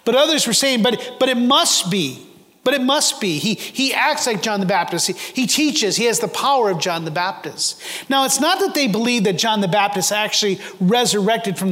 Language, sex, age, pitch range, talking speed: English, male, 40-59, 190-235 Hz, 225 wpm